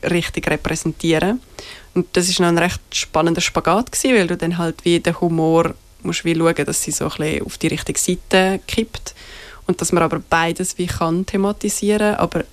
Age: 20-39